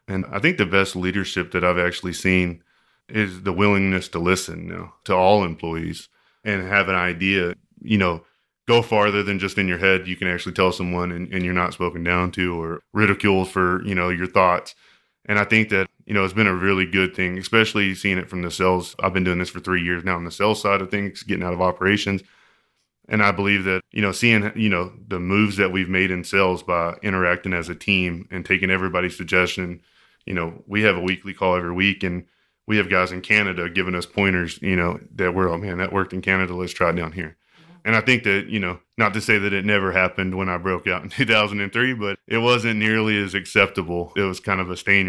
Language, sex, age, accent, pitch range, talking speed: English, male, 20-39, American, 90-100 Hz, 235 wpm